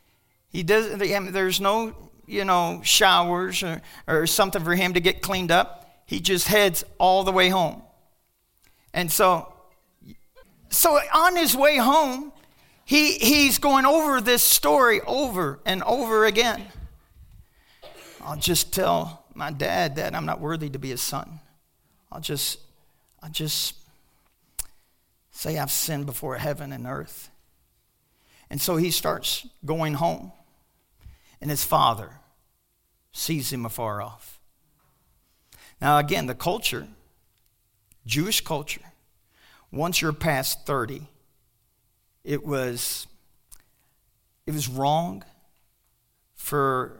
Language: English